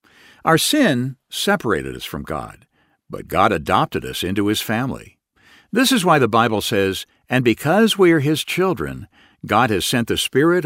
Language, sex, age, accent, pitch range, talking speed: English, male, 60-79, American, 90-150 Hz, 170 wpm